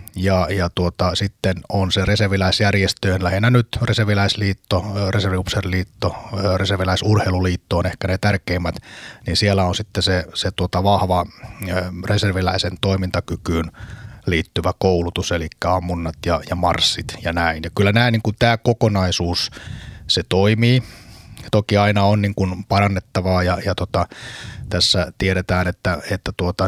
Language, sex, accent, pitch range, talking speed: Finnish, male, native, 90-100 Hz, 120 wpm